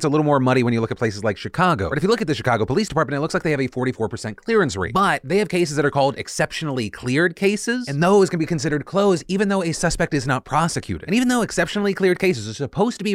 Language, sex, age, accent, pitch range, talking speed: English, male, 30-49, American, 130-195 Hz, 285 wpm